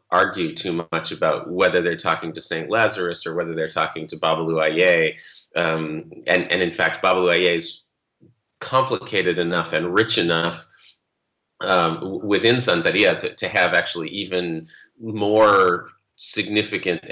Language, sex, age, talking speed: English, male, 30-49, 140 wpm